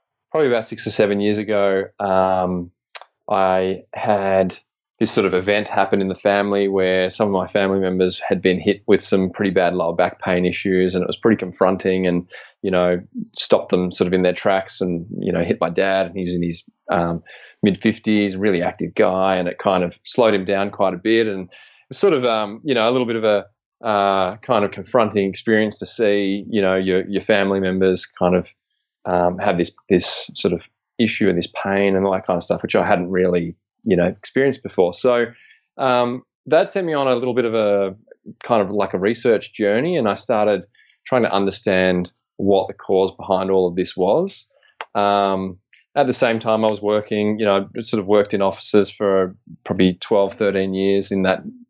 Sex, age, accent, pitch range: male, 20-39, Australian, 95-105 Hz